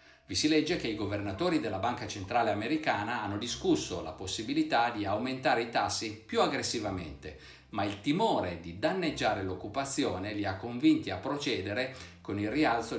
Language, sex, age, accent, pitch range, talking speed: Italian, male, 60-79, native, 90-135 Hz, 155 wpm